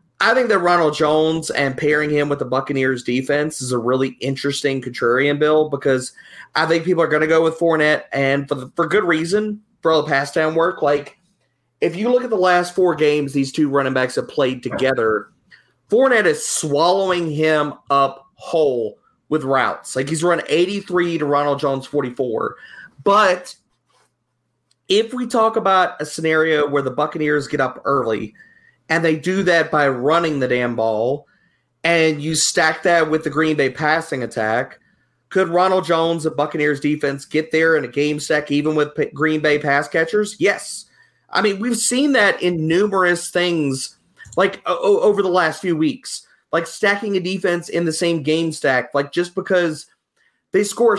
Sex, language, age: male, English, 30-49